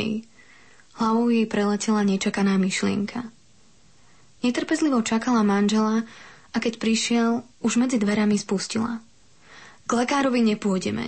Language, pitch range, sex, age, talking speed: Slovak, 205-240 Hz, female, 20-39, 95 wpm